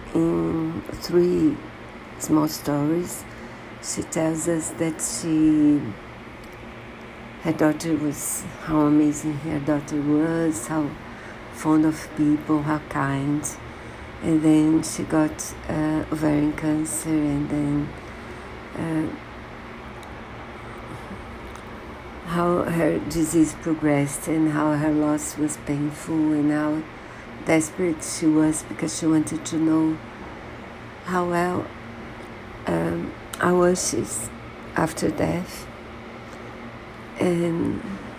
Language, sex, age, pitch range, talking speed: Portuguese, female, 60-79, 150-165 Hz, 95 wpm